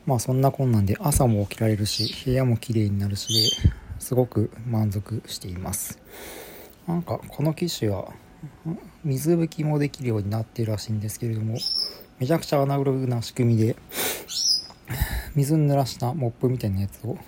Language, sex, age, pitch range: Japanese, male, 40-59, 105-130 Hz